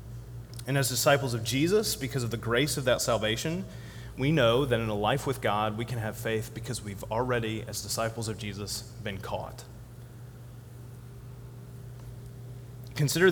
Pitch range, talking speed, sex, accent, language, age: 120-135 Hz, 155 wpm, male, American, English, 30-49